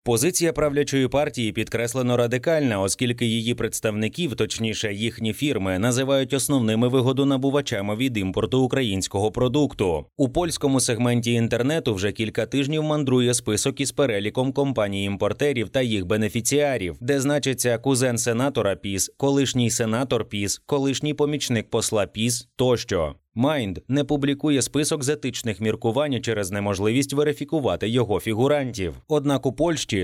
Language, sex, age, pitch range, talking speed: Ukrainian, male, 30-49, 110-140 Hz, 120 wpm